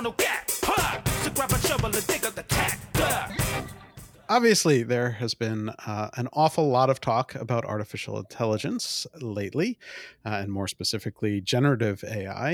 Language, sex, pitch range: English, male, 110-140 Hz